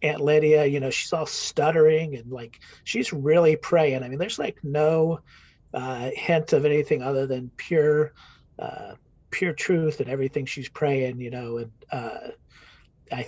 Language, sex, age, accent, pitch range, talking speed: English, male, 40-59, American, 135-155 Hz, 165 wpm